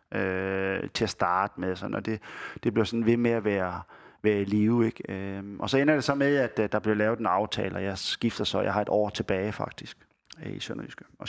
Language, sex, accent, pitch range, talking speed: Danish, male, native, 105-125 Hz, 235 wpm